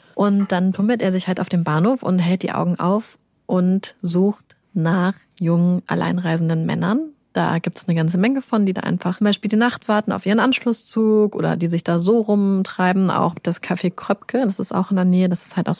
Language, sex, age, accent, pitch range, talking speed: German, female, 30-49, German, 175-210 Hz, 220 wpm